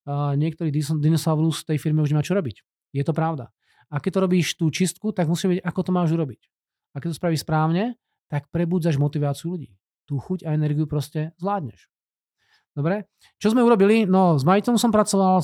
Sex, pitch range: male, 150-190 Hz